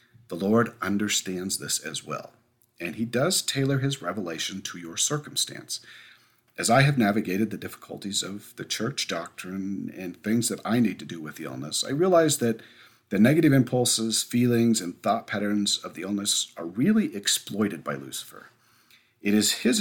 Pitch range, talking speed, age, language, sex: 100-130 Hz, 170 wpm, 40-59, English, male